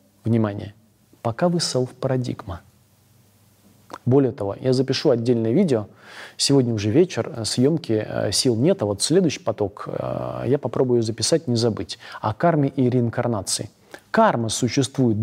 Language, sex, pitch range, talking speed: Russian, male, 110-145 Hz, 125 wpm